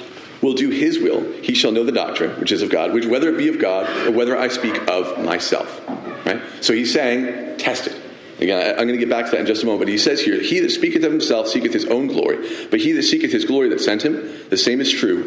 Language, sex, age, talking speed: English, male, 40-59, 265 wpm